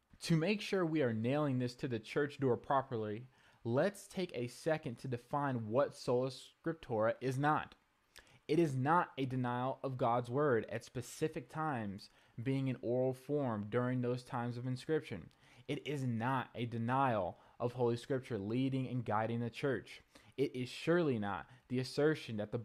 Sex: male